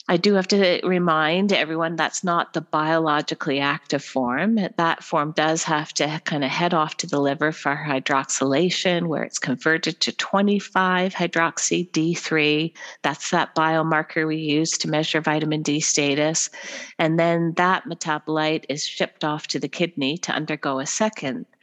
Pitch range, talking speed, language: 145-180 Hz, 155 wpm, English